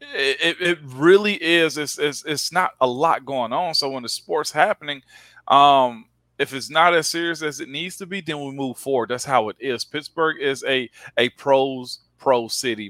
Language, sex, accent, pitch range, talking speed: English, male, American, 125-160 Hz, 200 wpm